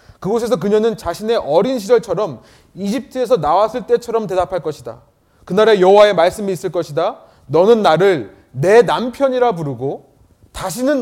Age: 30-49